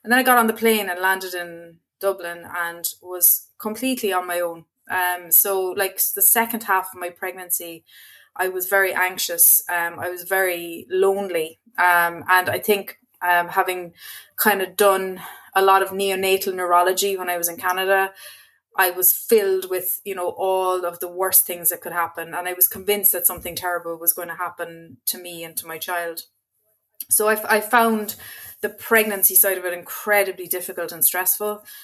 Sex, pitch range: female, 175-210 Hz